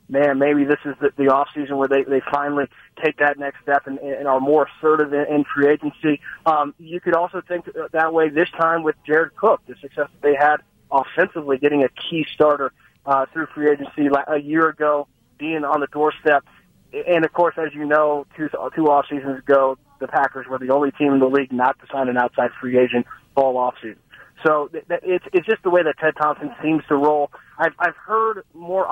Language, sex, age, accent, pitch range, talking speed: English, male, 30-49, American, 135-155 Hz, 195 wpm